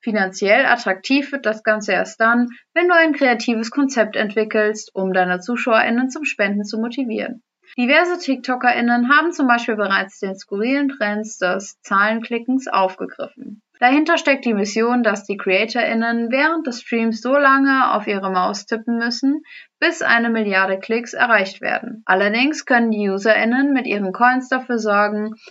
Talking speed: 150 wpm